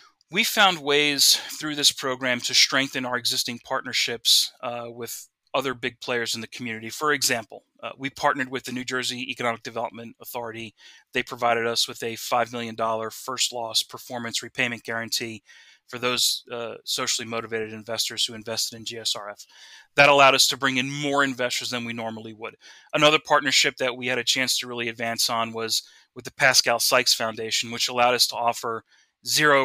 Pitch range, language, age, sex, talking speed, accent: 115-130 Hz, English, 30-49, male, 180 wpm, American